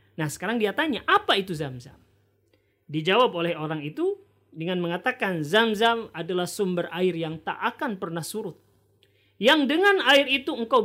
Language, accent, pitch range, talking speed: Indonesian, native, 155-225 Hz, 155 wpm